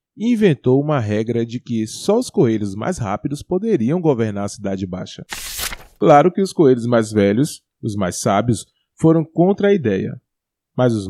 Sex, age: male, 20-39